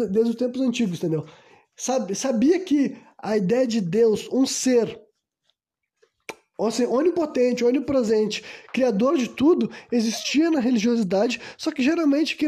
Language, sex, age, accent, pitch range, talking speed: Portuguese, male, 20-39, Brazilian, 220-285 Hz, 125 wpm